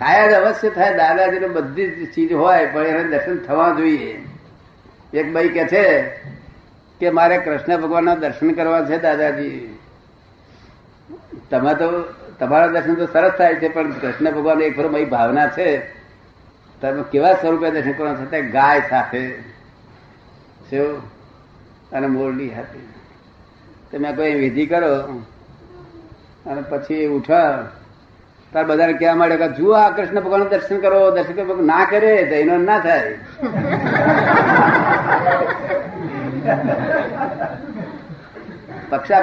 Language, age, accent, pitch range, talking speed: Gujarati, 60-79, native, 140-185 Hz, 110 wpm